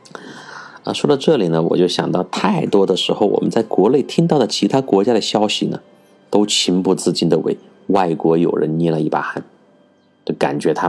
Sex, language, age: male, Chinese, 30-49